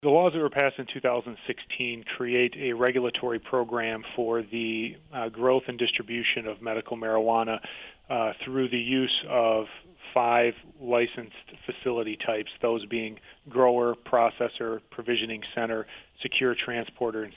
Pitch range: 110-125 Hz